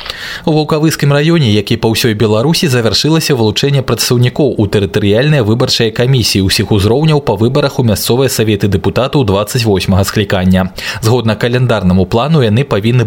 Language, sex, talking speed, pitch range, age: Russian, male, 135 wpm, 100-135 Hz, 20-39